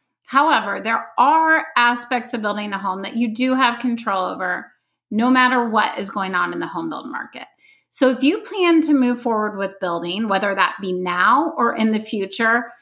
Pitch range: 195-275 Hz